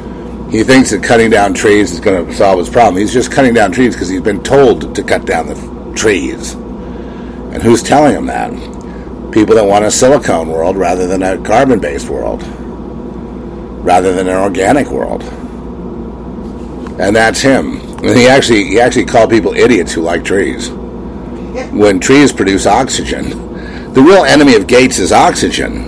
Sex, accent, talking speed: male, American, 170 wpm